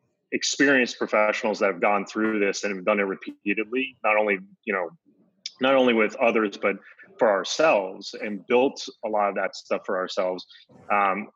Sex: male